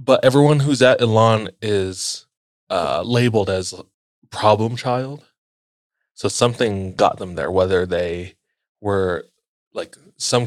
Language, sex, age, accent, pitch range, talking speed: English, male, 20-39, American, 95-115 Hz, 120 wpm